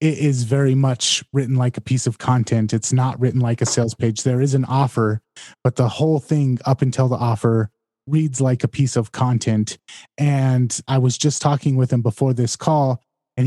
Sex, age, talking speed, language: male, 20-39, 205 wpm, English